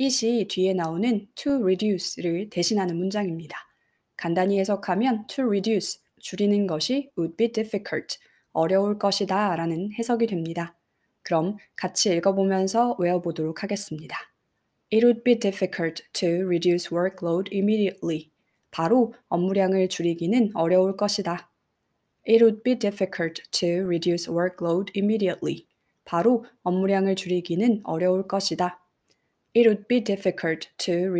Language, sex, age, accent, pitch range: Korean, female, 20-39, native, 175-205 Hz